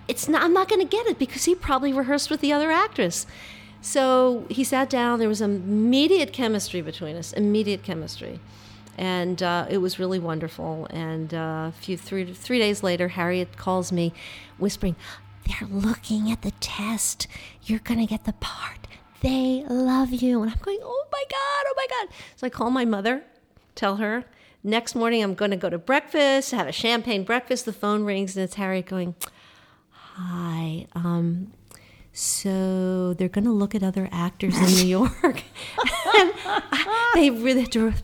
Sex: female